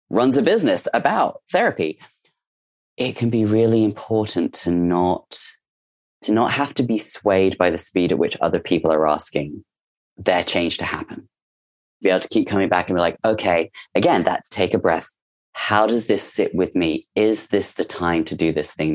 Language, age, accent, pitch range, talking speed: English, 30-49, British, 90-120 Hz, 190 wpm